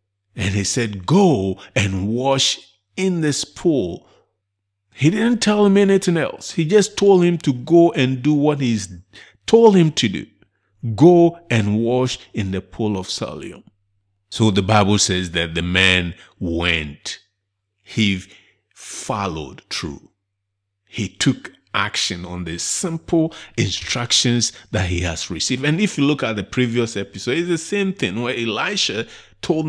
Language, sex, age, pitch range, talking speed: English, male, 50-69, 100-135 Hz, 150 wpm